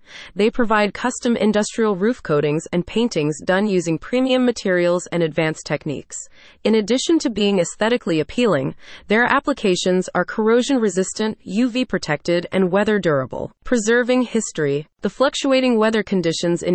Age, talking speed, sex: 30-49, 125 wpm, female